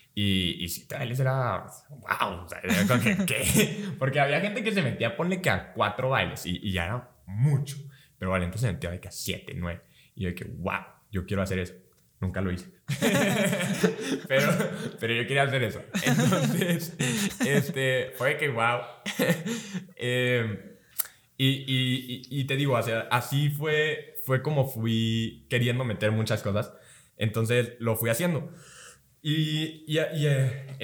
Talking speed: 155 wpm